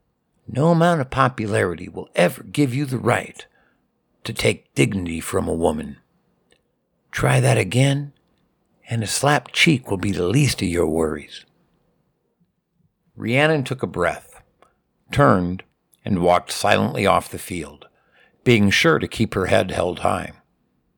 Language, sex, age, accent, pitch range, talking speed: English, male, 60-79, American, 95-140 Hz, 140 wpm